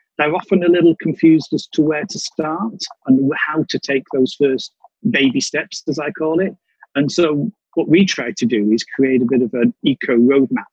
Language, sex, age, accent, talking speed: English, male, 40-59, British, 205 wpm